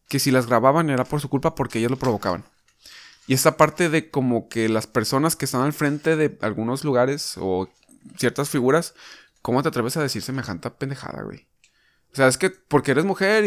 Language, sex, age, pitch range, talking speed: Spanish, male, 20-39, 115-155 Hz, 200 wpm